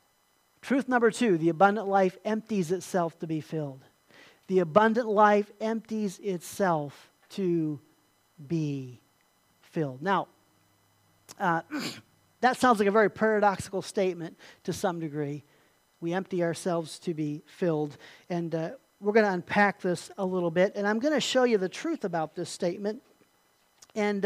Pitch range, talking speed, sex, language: 170-215 Hz, 145 wpm, male, English